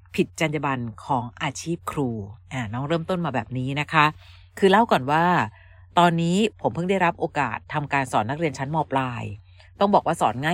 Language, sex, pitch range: Thai, female, 125-180 Hz